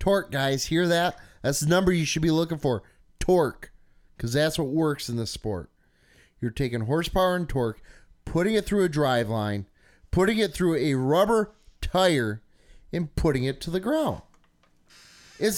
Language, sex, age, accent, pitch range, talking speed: English, male, 30-49, American, 125-180 Hz, 170 wpm